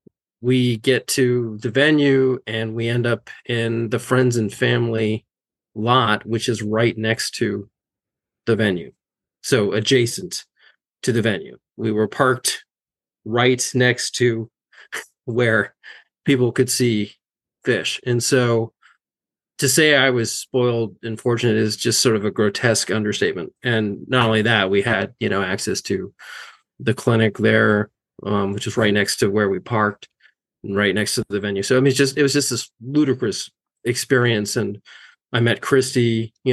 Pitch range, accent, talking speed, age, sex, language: 110-125 Hz, American, 160 wpm, 30-49, male, English